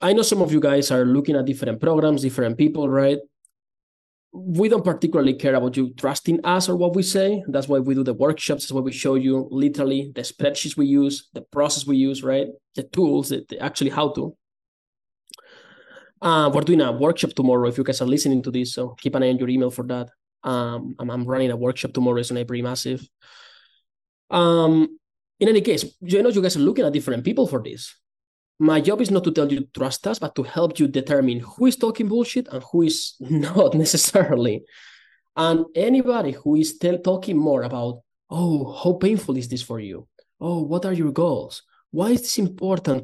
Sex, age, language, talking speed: male, 20-39, English, 210 wpm